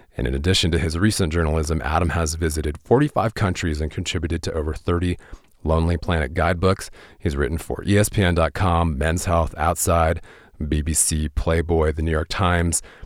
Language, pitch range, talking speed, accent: English, 80-95 Hz, 150 wpm, American